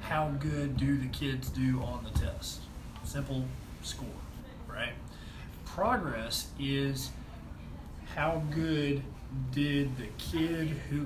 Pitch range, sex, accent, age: 120-145 Hz, male, American, 30-49